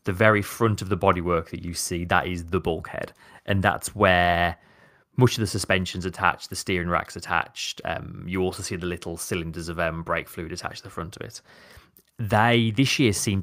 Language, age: English, 30-49